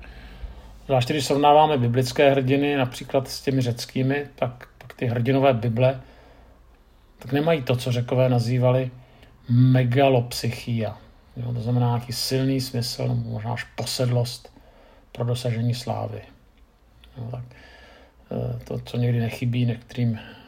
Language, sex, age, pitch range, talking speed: Czech, male, 50-69, 115-130 Hz, 120 wpm